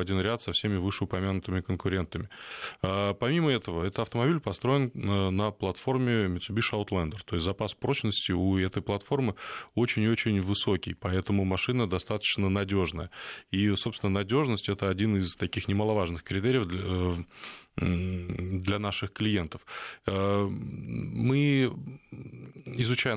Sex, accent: male, native